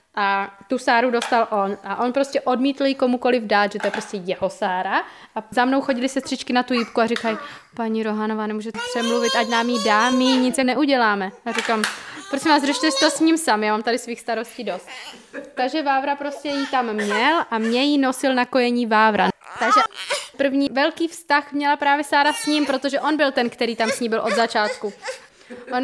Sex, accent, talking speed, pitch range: female, native, 210 wpm, 220-270 Hz